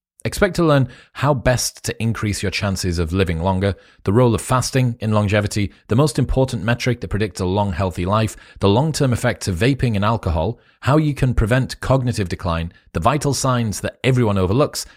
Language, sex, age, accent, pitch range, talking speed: English, male, 30-49, British, 90-115 Hz, 190 wpm